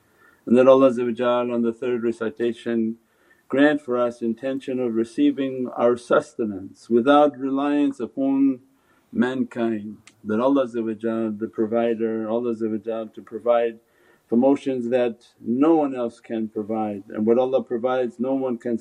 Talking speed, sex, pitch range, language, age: 130 wpm, male, 110-125 Hz, English, 50-69